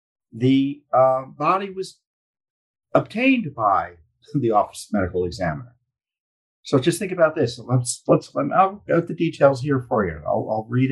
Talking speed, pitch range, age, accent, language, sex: 160 wpm, 110-150 Hz, 50-69, American, English, male